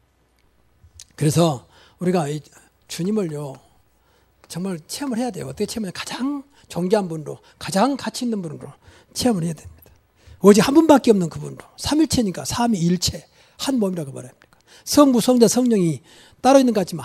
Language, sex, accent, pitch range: Korean, male, native, 165-245 Hz